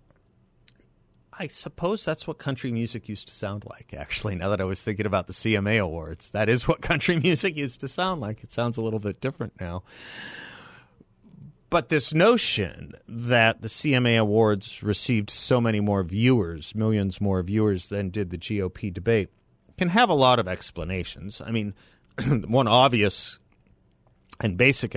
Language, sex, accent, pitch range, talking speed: English, male, American, 95-120 Hz, 165 wpm